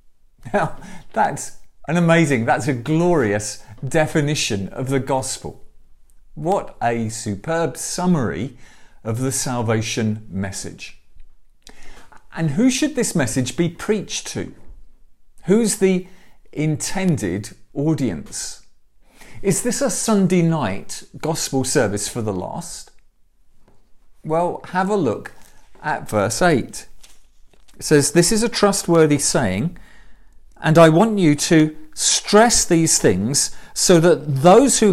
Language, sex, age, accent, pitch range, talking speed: English, male, 40-59, British, 120-175 Hz, 115 wpm